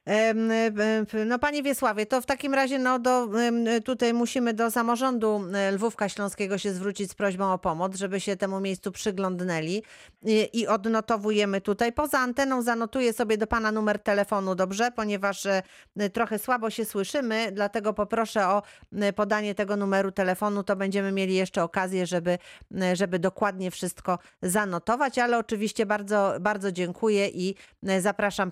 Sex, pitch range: female, 185-220 Hz